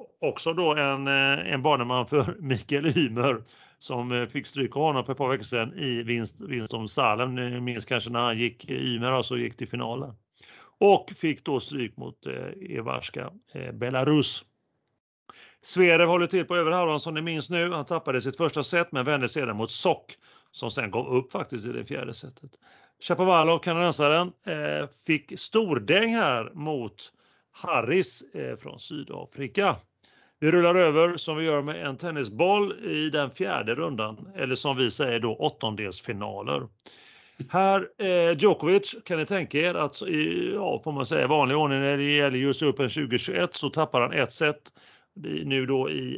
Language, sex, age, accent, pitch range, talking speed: Swedish, male, 40-59, native, 125-160 Hz, 170 wpm